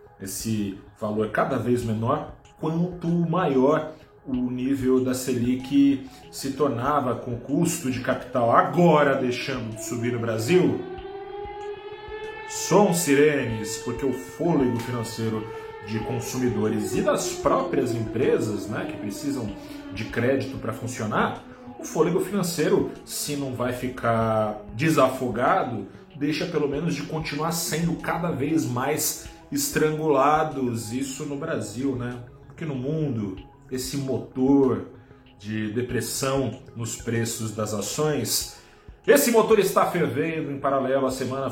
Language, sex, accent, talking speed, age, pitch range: Portuguese, male, Brazilian, 120 wpm, 40-59, 120-150 Hz